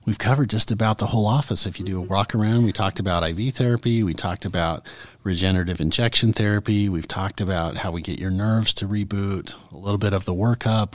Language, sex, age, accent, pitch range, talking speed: English, male, 30-49, American, 100-120 Hz, 220 wpm